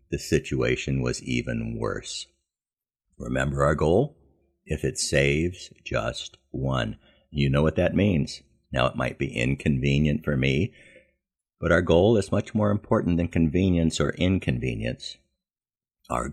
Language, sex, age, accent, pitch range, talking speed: English, male, 50-69, American, 70-100 Hz, 135 wpm